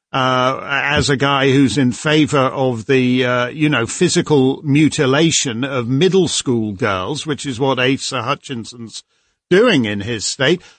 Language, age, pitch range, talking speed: English, 50-69, 135-175 Hz, 150 wpm